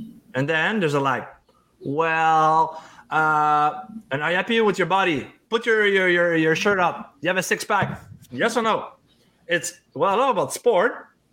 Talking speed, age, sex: 180 wpm, 20-39, male